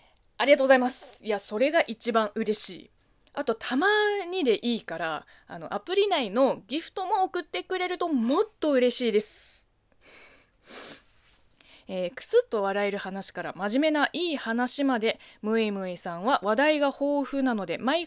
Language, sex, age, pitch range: Japanese, female, 20-39, 195-285 Hz